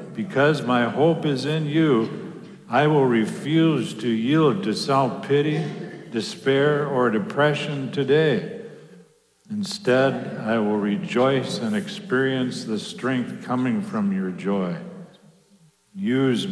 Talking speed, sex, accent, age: 110 wpm, male, American, 60-79